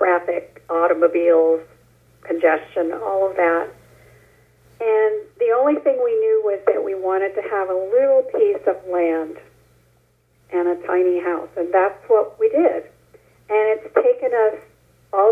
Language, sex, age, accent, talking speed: English, female, 50-69, American, 145 wpm